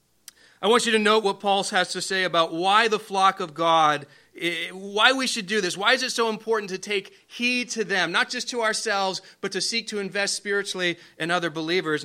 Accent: American